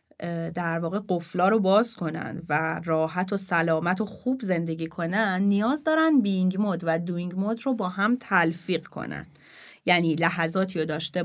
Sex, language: female, Persian